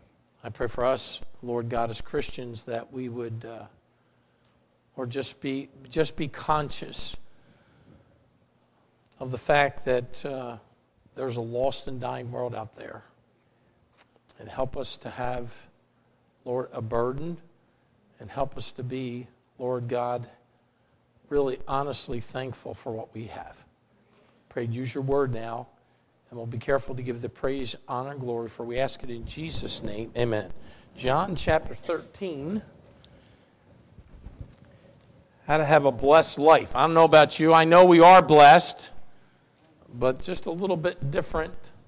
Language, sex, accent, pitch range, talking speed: English, male, American, 120-150 Hz, 145 wpm